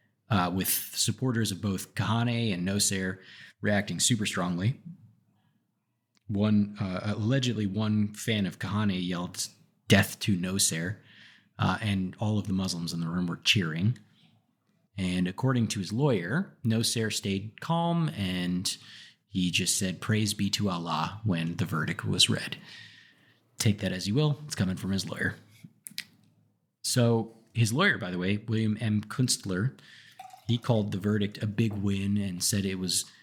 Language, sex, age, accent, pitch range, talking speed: English, male, 30-49, American, 95-115 Hz, 150 wpm